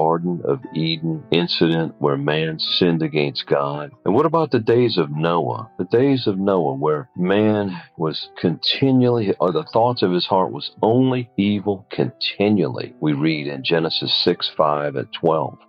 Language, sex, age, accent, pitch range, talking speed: English, male, 50-69, American, 80-100 Hz, 160 wpm